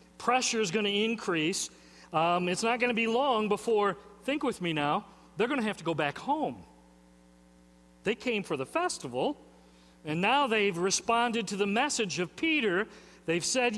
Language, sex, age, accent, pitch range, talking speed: English, male, 40-59, American, 175-245 Hz, 180 wpm